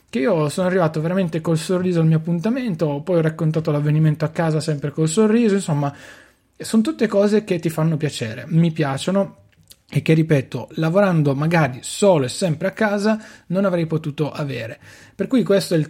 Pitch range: 135-160 Hz